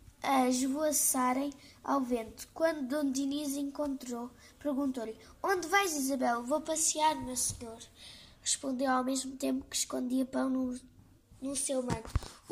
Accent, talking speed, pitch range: Brazilian, 140 wpm, 265-305 Hz